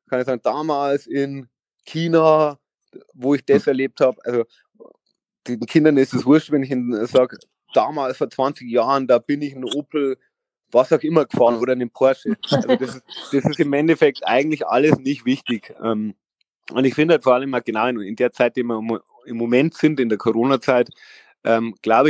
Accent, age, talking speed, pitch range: German, 30-49, 185 wpm, 115-140 Hz